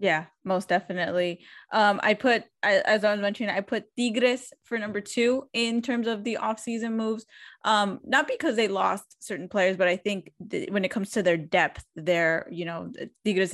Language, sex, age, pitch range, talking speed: English, female, 10-29, 180-225 Hz, 190 wpm